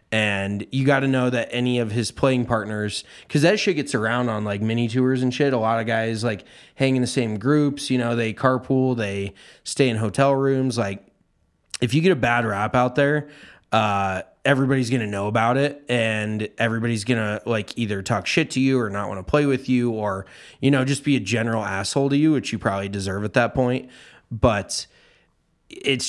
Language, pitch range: English, 110-140 Hz